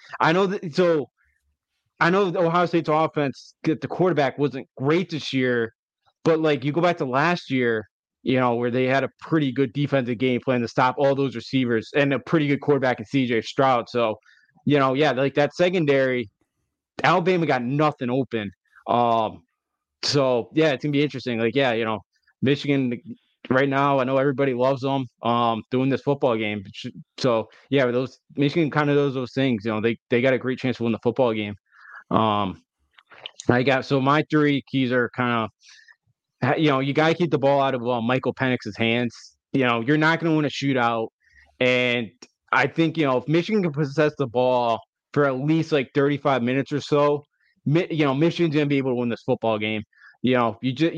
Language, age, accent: English, 20-39, American